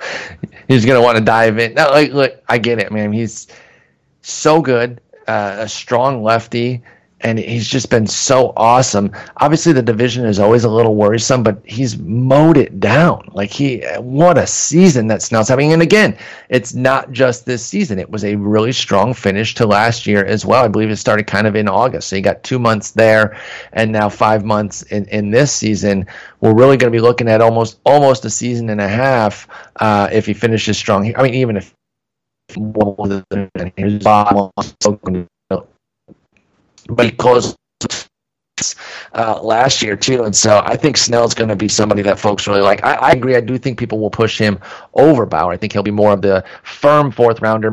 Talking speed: 195 wpm